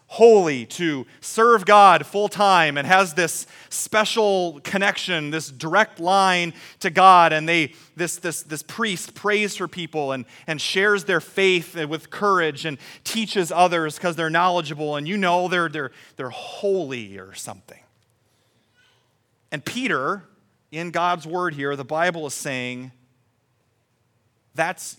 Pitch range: 120-180 Hz